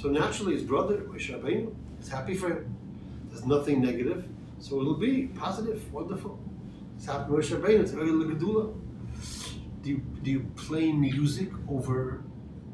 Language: English